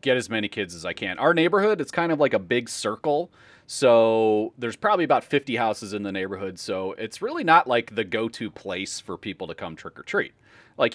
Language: English